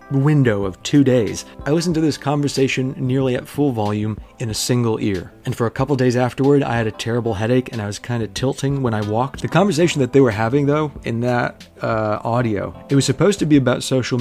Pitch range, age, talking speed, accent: 110-135 Hz, 30-49, 230 wpm, American